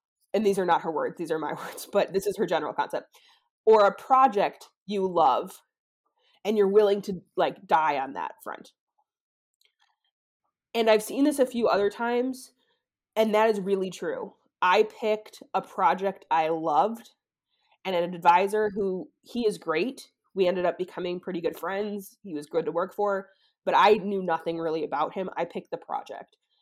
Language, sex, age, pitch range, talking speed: English, female, 20-39, 180-235 Hz, 180 wpm